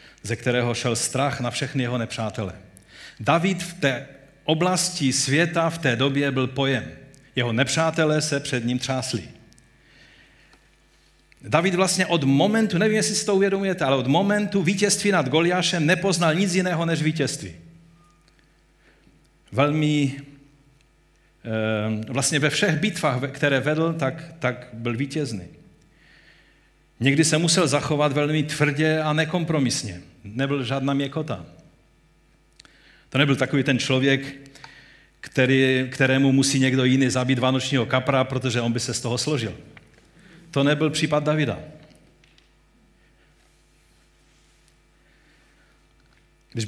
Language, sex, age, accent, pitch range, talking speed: Czech, male, 50-69, native, 120-155 Hz, 115 wpm